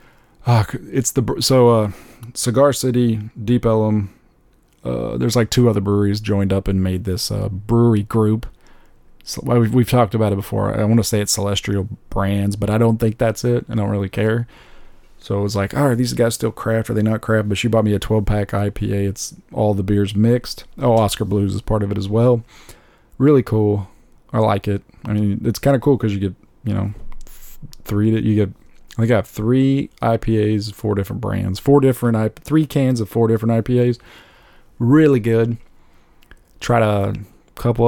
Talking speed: 195 wpm